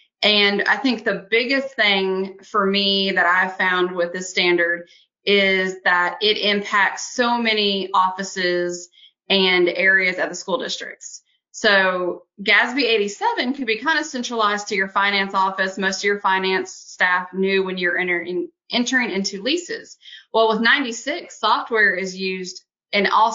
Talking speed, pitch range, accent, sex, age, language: 150 wpm, 185-225 Hz, American, female, 30-49, English